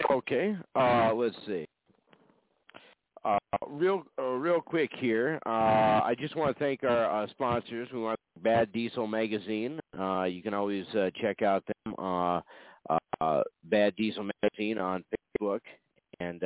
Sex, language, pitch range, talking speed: male, English, 90-110 Hz, 155 wpm